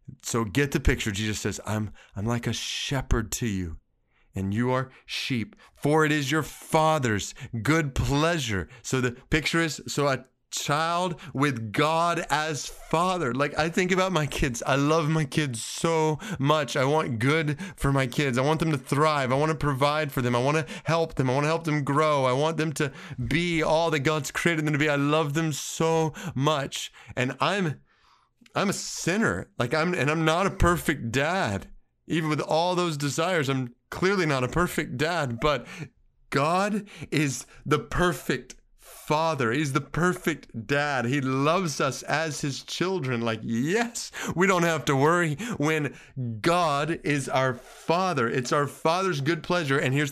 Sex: male